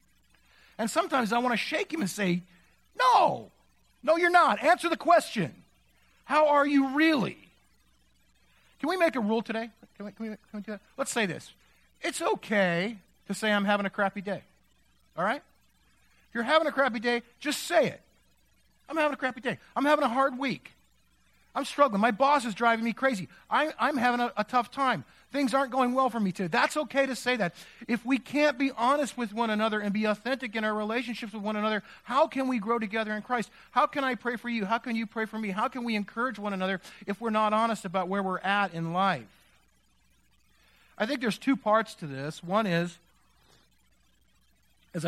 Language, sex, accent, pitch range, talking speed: English, male, American, 180-255 Hz, 210 wpm